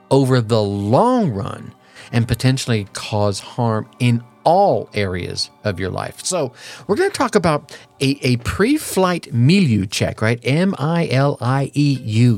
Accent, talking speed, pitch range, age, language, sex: American, 130 wpm, 110-150 Hz, 50-69, English, male